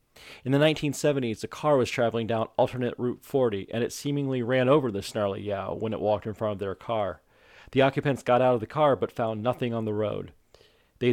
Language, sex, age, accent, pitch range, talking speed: English, male, 40-59, American, 110-130 Hz, 220 wpm